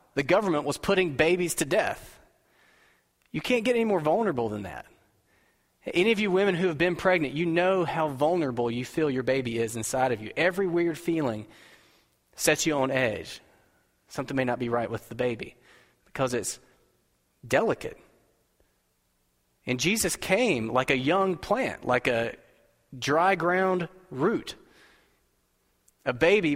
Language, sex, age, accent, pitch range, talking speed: English, male, 30-49, American, 115-165 Hz, 150 wpm